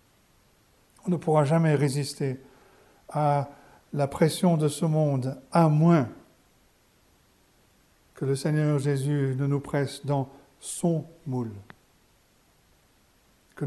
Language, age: French, 60-79